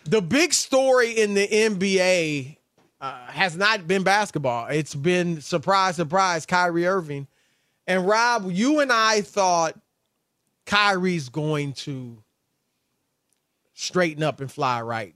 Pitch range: 150-195 Hz